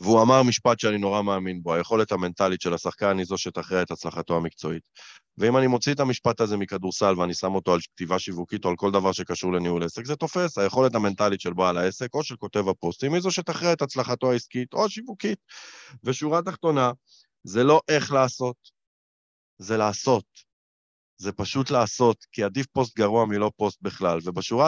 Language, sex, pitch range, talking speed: Hebrew, male, 95-145 Hz, 180 wpm